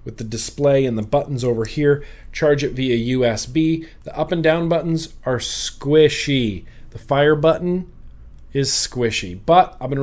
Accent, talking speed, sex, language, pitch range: American, 160 wpm, male, English, 115-160 Hz